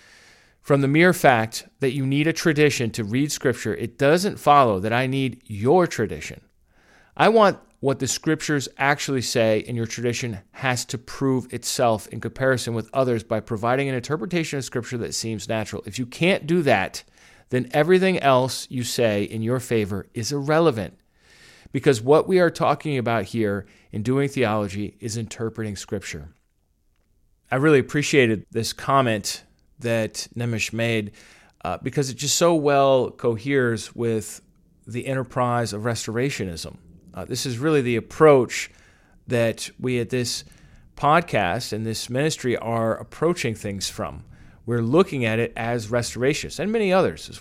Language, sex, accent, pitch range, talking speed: English, male, American, 110-140 Hz, 155 wpm